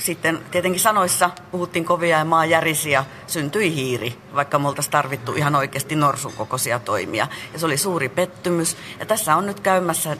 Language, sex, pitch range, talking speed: Finnish, female, 140-175 Hz, 140 wpm